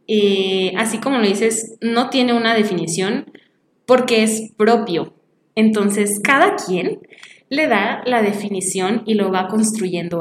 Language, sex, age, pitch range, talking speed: Spanish, female, 20-39, 210-255 Hz, 135 wpm